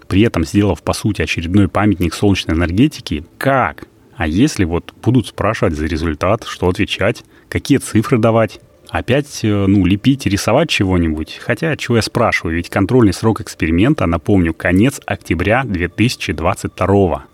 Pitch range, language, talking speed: 90-120 Hz, Russian, 135 wpm